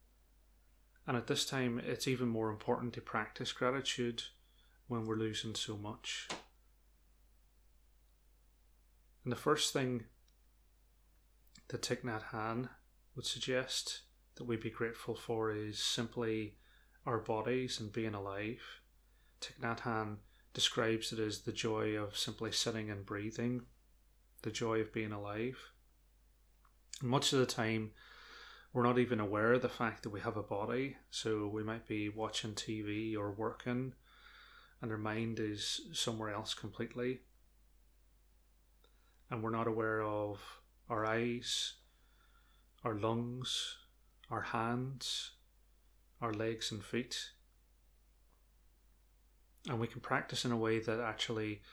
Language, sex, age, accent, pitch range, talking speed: English, male, 30-49, British, 105-120 Hz, 130 wpm